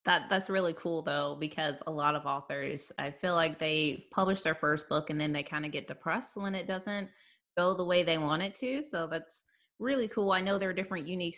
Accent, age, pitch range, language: American, 20-39, 155-190 Hz, English